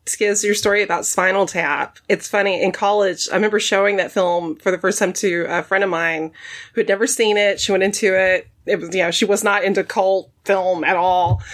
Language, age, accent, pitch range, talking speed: English, 20-39, American, 195-280 Hz, 235 wpm